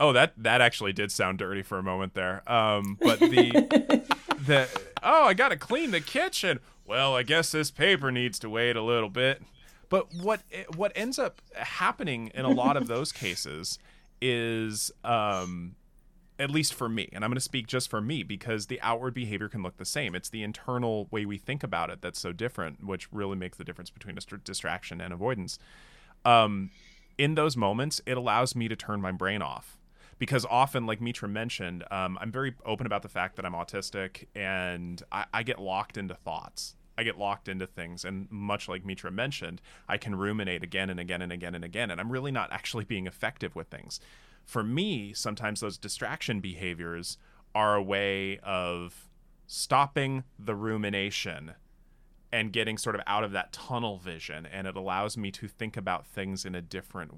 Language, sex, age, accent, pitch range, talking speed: English, male, 20-39, American, 95-125 Hz, 190 wpm